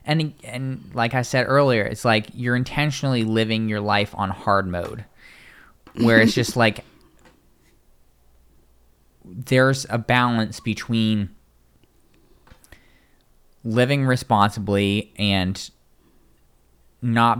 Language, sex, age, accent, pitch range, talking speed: English, male, 20-39, American, 95-125 Hz, 95 wpm